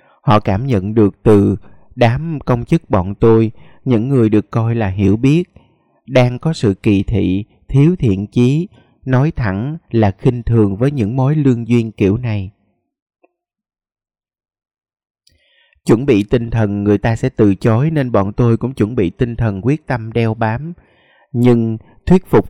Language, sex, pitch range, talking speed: Vietnamese, male, 105-130 Hz, 165 wpm